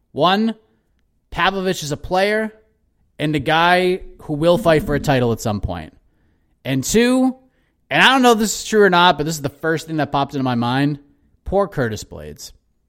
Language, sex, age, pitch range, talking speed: English, male, 30-49, 125-190 Hz, 200 wpm